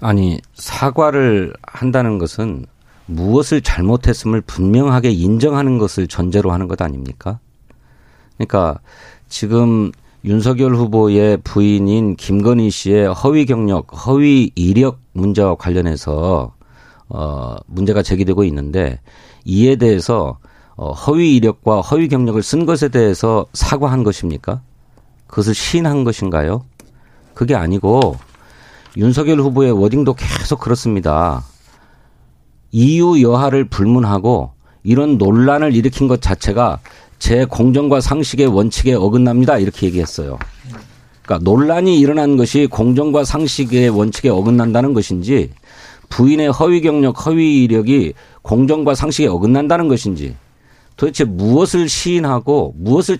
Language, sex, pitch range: Korean, male, 95-135 Hz